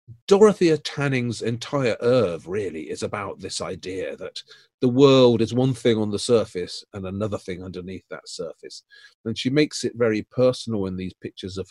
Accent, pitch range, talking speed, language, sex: British, 100-155 Hz, 175 wpm, English, male